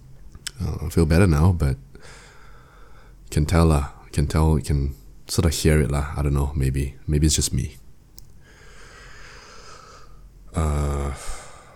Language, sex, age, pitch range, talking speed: English, male, 20-39, 70-85 Hz, 135 wpm